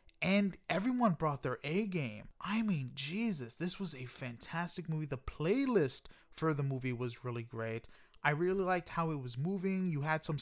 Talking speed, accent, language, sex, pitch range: 180 wpm, American, English, male, 135-185 Hz